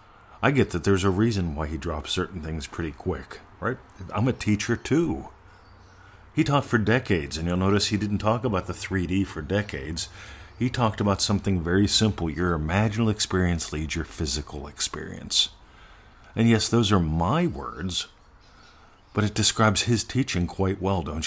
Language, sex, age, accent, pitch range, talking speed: English, male, 40-59, American, 90-110 Hz, 170 wpm